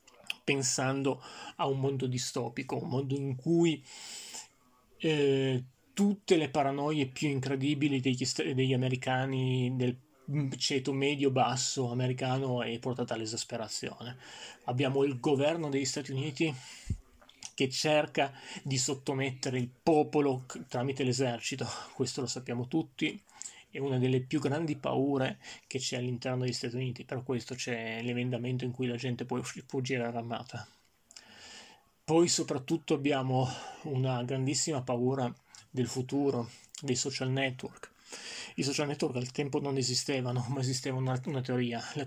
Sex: male